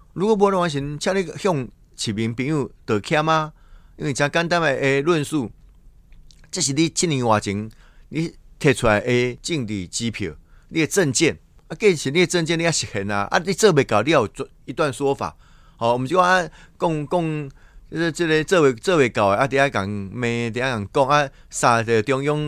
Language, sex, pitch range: Chinese, male, 110-155 Hz